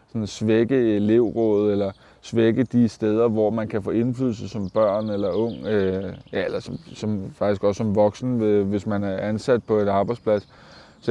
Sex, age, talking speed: male, 20-39, 160 wpm